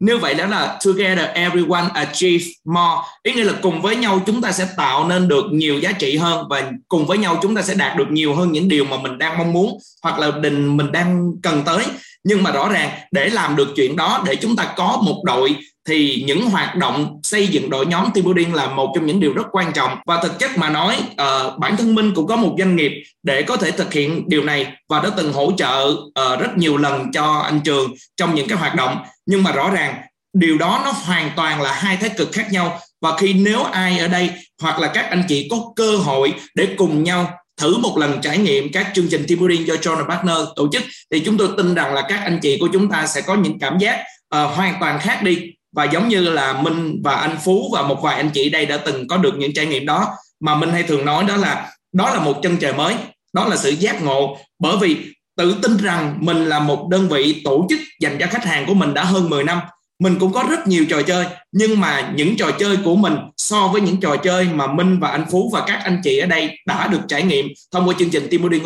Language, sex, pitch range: Vietnamese, male, 150-190 Hz